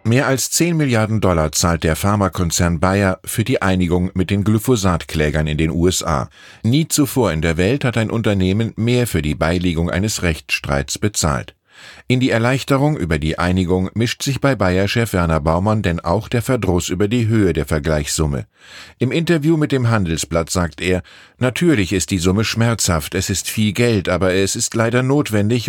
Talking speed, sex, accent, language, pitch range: 175 wpm, male, German, German, 90-115 Hz